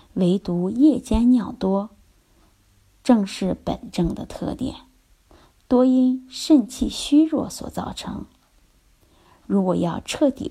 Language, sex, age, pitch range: Chinese, female, 20-39, 185-270 Hz